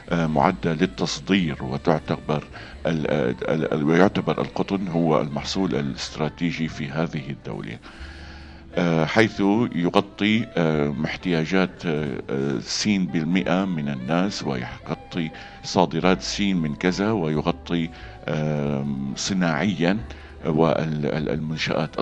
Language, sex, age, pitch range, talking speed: Arabic, male, 50-69, 75-95 Hz, 70 wpm